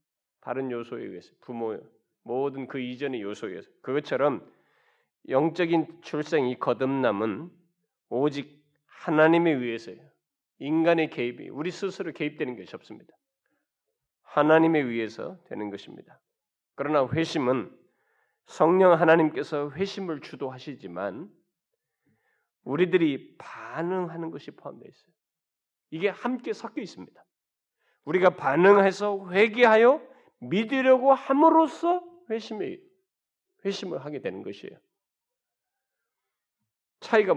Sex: male